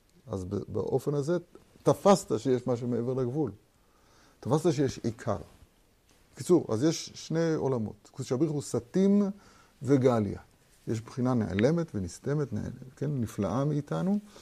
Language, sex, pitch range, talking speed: Hebrew, male, 105-150 Hz, 115 wpm